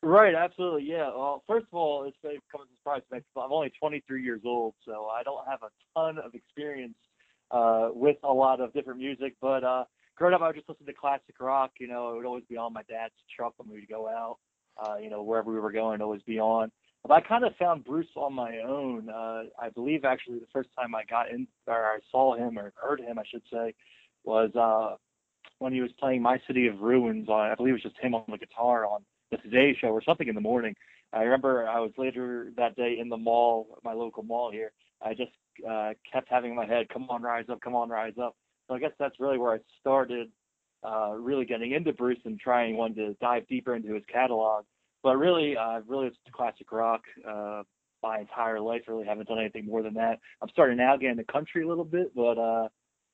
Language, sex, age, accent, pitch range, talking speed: English, male, 20-39, American, 115-135 Hz, 235 wpm